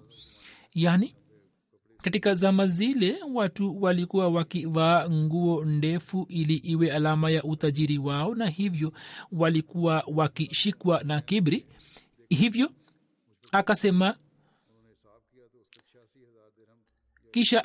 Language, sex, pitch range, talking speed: Swahili, male, 155-185 Hz, 80 wpm